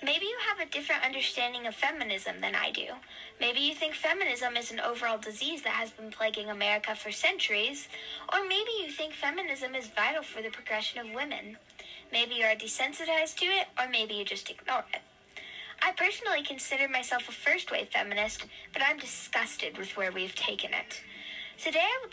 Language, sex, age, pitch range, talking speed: English, female, 10-29, 220-315 Hz, 185 wpm